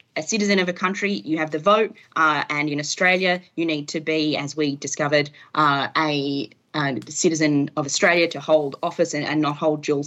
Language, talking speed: English, 205 wpm